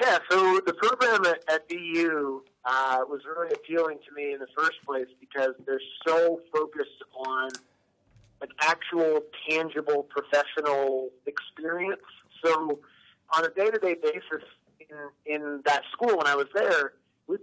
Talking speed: 140 wpm